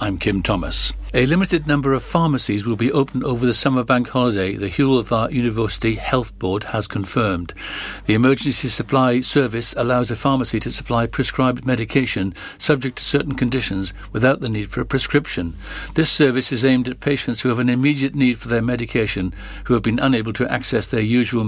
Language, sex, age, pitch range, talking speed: English, male, 60-79, 105-130 Hz, 185 wpm